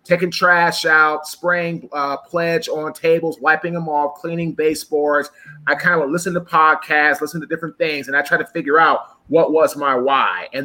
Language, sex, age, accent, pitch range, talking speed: English, male, 30-49, American, 145-175 Hz, 190 wpm